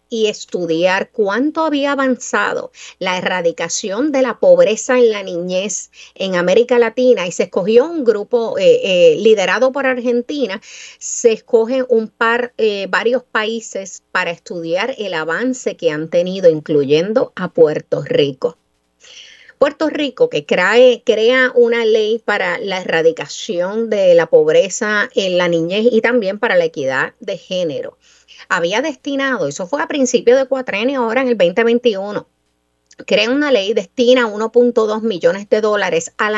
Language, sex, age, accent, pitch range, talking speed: Spanish, female, 30-49, American, 195-290 Hz, 140 wpm